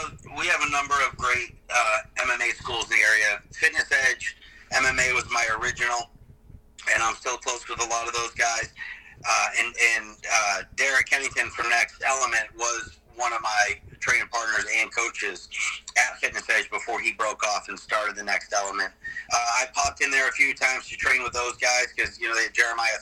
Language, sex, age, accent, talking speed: English, male, 30-49, American, 200 wpm